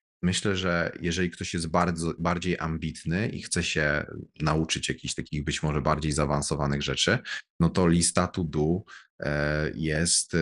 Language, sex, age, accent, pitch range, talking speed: Polish, male, 30-49, native, 70-85 Hz, 140 wpm